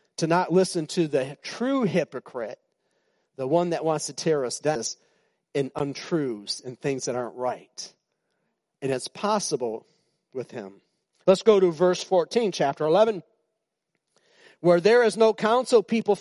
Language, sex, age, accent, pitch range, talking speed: English, male, 40-59, American, 155-220 Hz, 150 wpm